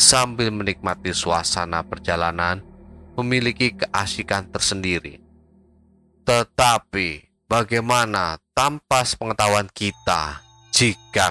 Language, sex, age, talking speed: Indonesian, male, 30-49, 70 wpm